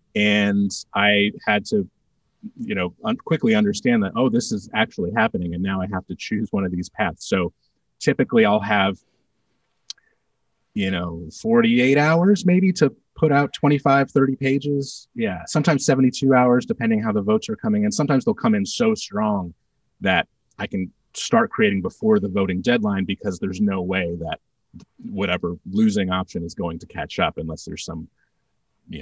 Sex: male